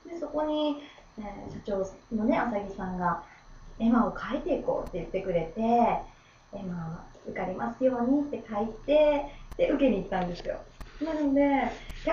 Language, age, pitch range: Japanese, 30-49, 205-310 Hz